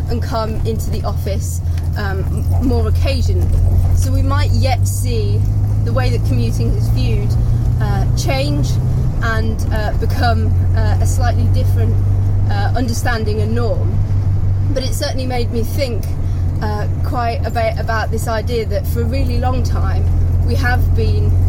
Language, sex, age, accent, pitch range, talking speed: English, female, 20-39, British, 95-105 Hz, 150 wpm